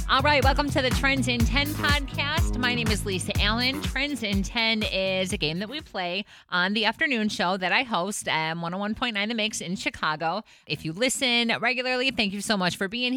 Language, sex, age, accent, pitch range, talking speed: English, female, 30-49, American, 165-230 Hz, 210 wpm